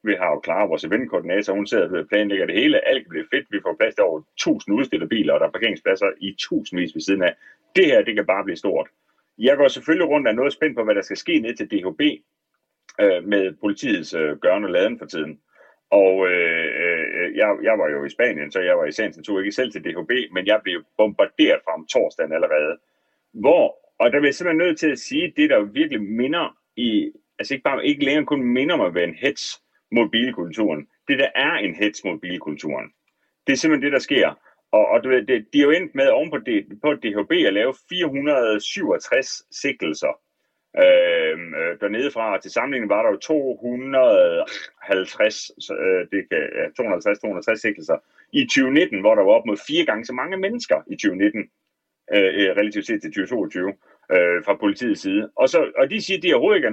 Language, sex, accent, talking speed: Danish, male, native, 195 wpm